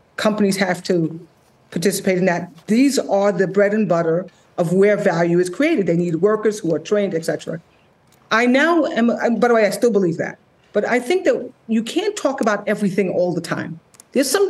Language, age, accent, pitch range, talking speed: English, 40-59, American, 190-235 Hz, 205 wpm